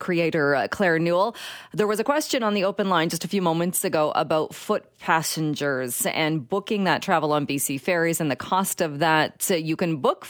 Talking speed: 205 wpm